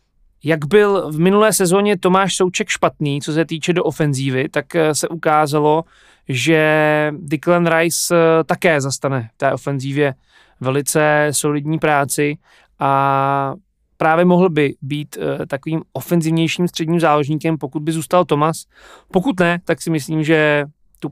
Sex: male